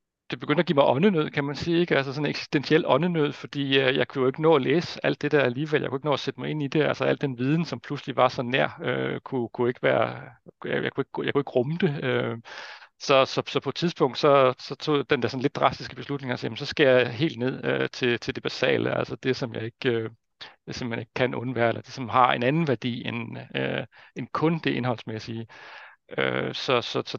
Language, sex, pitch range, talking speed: Danish, male, 120-145 Hz, 255 wpm